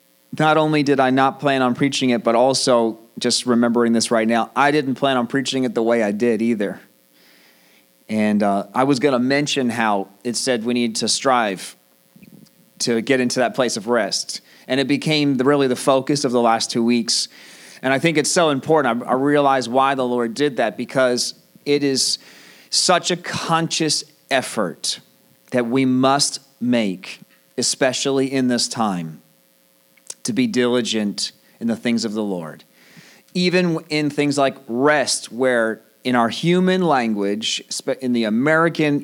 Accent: American